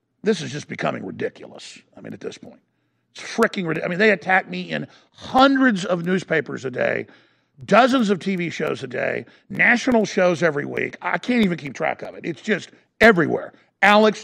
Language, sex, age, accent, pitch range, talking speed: English, male, 50-69, American, 175-220 Hz, 190 wpm